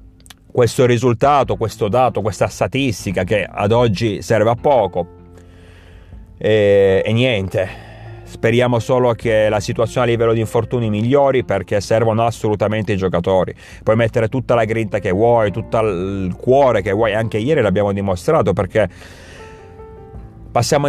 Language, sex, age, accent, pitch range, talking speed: Italian, male, 30-49, native, 95-125 Hz, 140 wpm